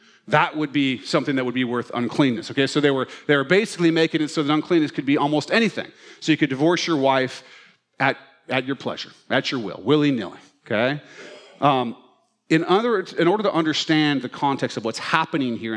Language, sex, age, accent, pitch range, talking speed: English, male, 40-59, American, 130-165 Hz, 200 wpm